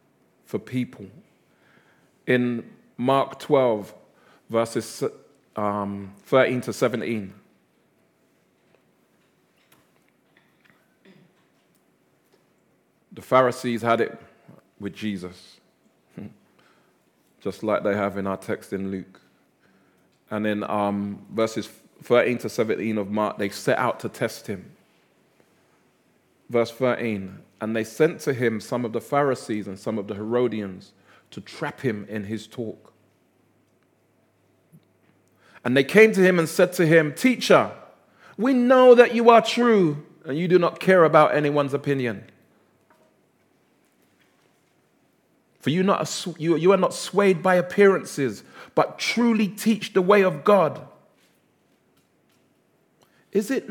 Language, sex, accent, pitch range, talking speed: English, male, British, 105-175 Hz, 115 wpm